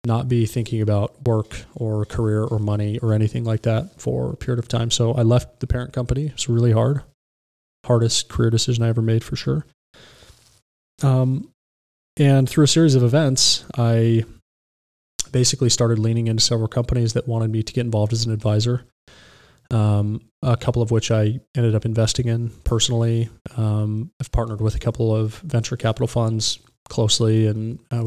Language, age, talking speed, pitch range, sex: English, 20-39, 175 wpm, 110-120 Hz, male